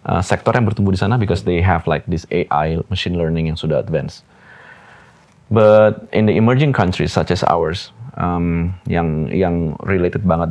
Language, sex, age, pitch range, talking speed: Indonesian, male, 30-49, 85-110 Hz, 170 wpm